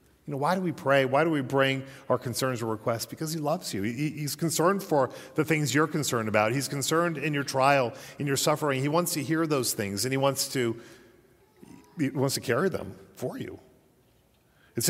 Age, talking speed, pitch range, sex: 40-59, 215 wpm, 115-145 Hz, male